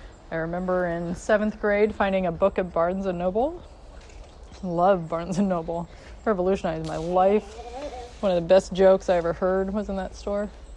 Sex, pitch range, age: female, 160-195 Hz, 20-39